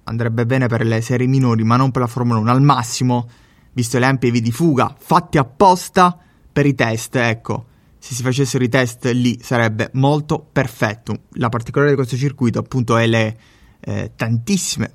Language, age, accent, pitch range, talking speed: Italian, 20-39, native, 115-135 Hz, 180 wpm